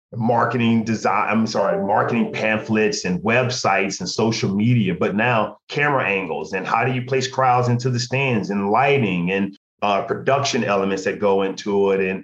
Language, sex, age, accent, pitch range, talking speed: English, male, 40-59, American, 115-140 Hz, 170 wpm